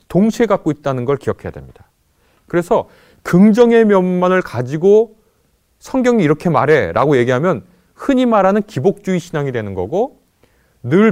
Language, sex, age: Korean, male, 30-49